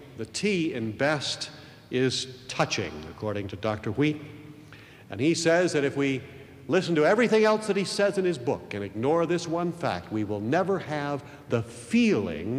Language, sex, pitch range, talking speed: English, male, 110-180 Hz, 175 wpm